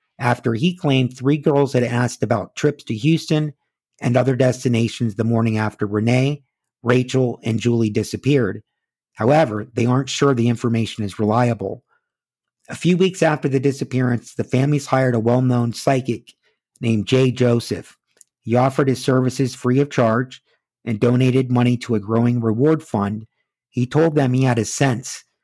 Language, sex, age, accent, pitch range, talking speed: English, male, 50-69, American, 115-135 Hz, 160 wpm